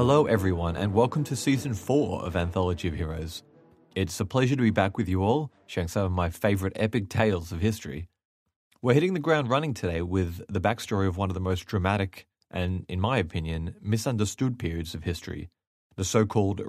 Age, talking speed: 30-49, 195 wpm